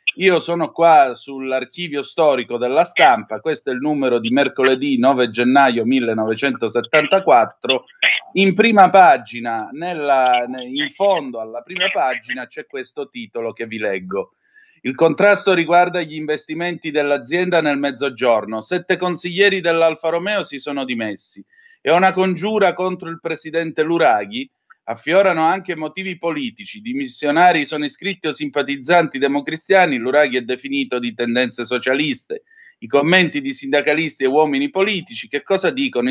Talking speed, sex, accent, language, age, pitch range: 130 wpm, male, native, Italian, 30-49, 135-190 Hz